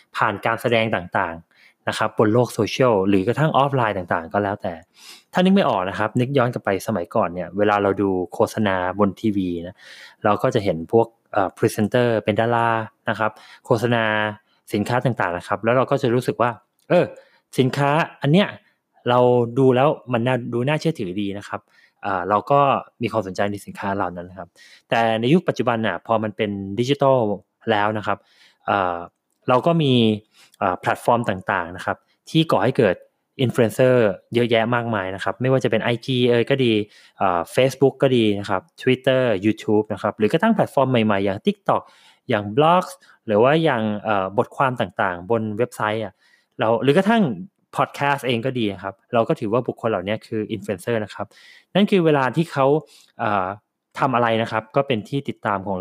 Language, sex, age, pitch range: Thai, male, 20-39, 105-130 Hz